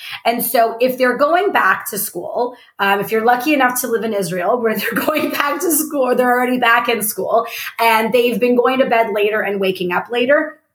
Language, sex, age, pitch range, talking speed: English, female, 20-39, 210-260 Hz, 225 wpm